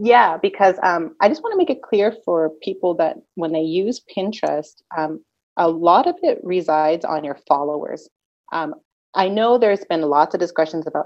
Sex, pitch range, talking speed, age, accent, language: female, 150-185 Hz, 190 wpm, 30-49, American, English